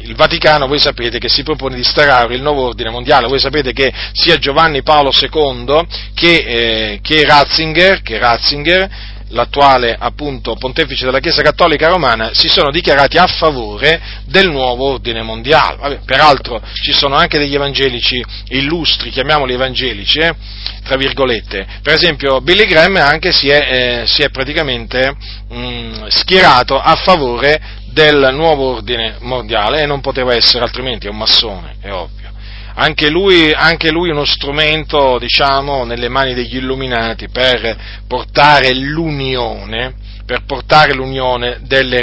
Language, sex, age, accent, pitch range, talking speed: Italian, male, 40-59, native, 115-155 Hz, 145 wpm